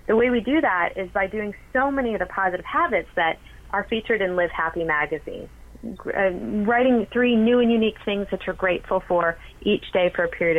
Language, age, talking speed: English, 30-49, 205 wpm